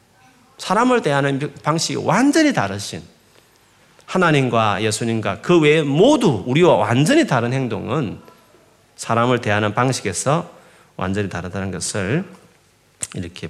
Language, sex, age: Korean, male, 40-59